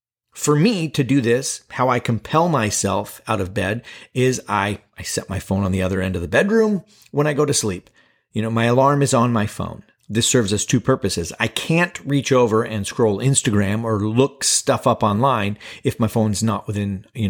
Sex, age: male, 40-59